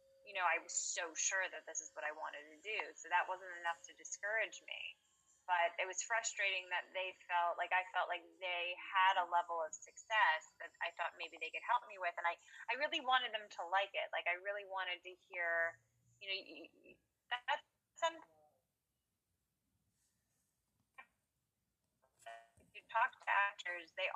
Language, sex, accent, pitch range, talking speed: English, female, American, 175-260 Hz, 180 wpm